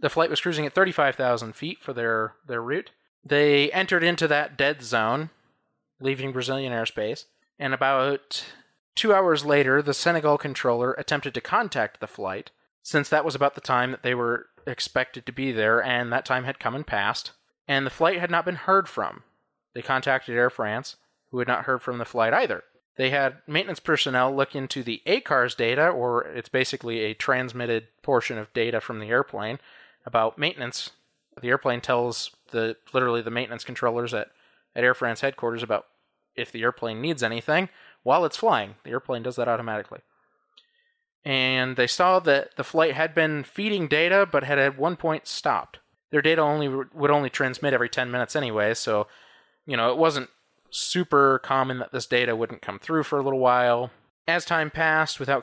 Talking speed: 185 wpm